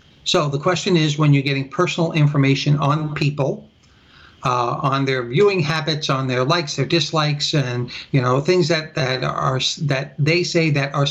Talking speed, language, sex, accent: 180 wpm, English, male, American